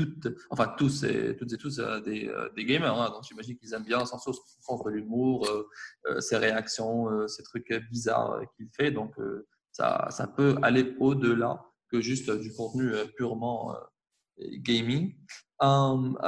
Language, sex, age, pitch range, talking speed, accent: French, male, 20-39, 115-140 Hz, 150 wpm, French